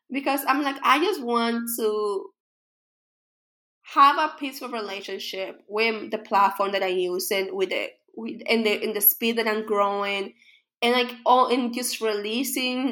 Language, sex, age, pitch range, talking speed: English, female, 20-39, 205-270 Hz, 165 wpm